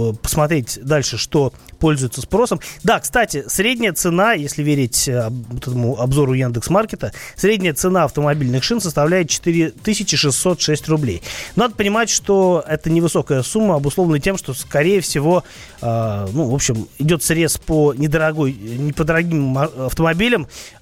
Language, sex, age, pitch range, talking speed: Russian, male, 30-49, 130-165 Hz, 120 wpm